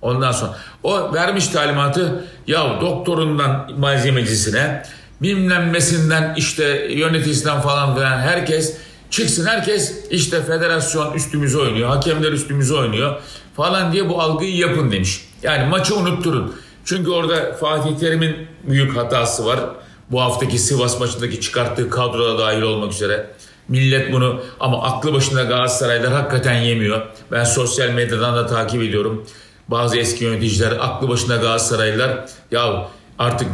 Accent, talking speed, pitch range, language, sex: native, 125 wpm, 125-155 Hz, Turkish, male